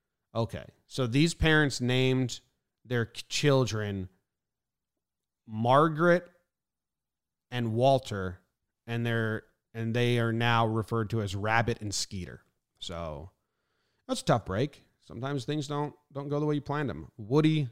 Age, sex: 30-49, male